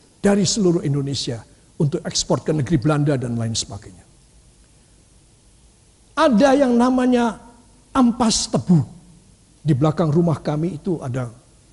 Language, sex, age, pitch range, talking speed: Indonesian, male, 60-79, 160-255 Hz, 115 wpm